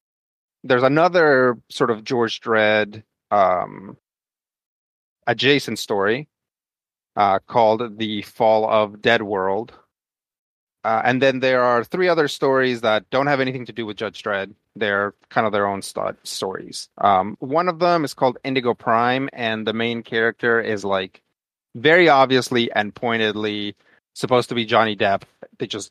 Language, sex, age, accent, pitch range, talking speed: English, male, 30-49, American, 105-130 Hz, 150 wpm